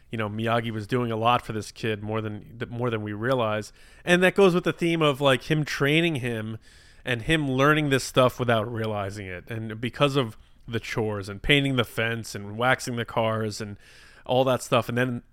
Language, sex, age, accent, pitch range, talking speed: English, male, 20-39, American, 110-135 Hz, 210 wpm